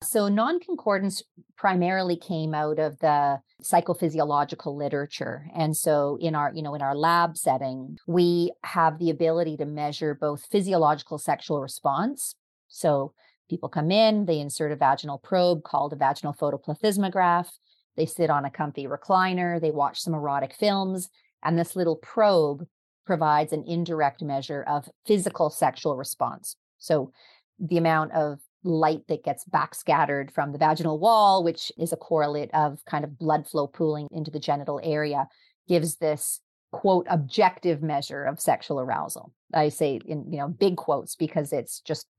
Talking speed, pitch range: 155 wpm, 150-180 Hz